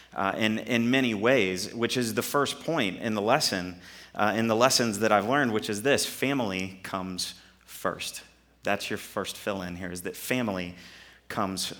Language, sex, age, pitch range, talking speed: English, male, 30-49, 95-120 Hz, 180 wpm